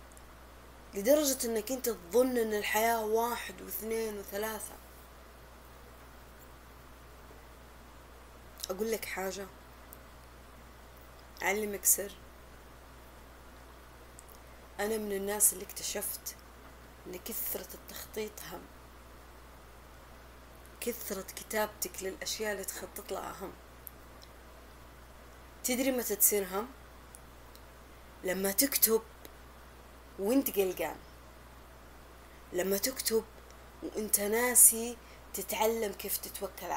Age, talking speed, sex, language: 30-49, 70 wpm, female, Arabic